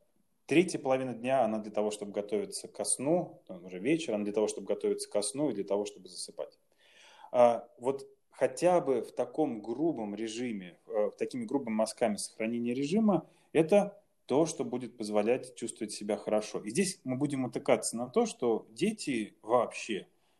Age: 30-49